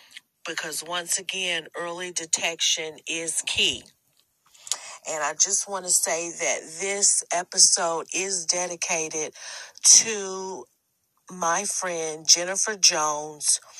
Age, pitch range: 40-59, 160-185 Hz